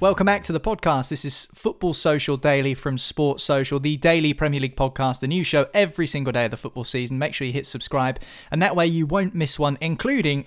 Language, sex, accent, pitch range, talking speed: English, male, British, 135-170 Hz, 235 wpm